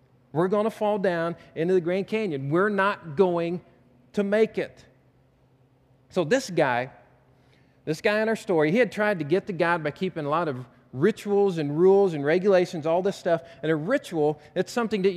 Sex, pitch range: male, 135-200 Hz